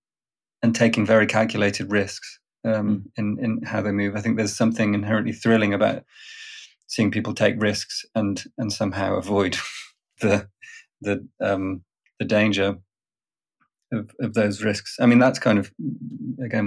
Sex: male